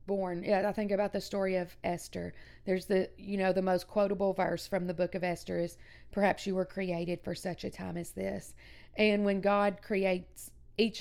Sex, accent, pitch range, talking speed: female, American, 185-205 Hz, 200 wpm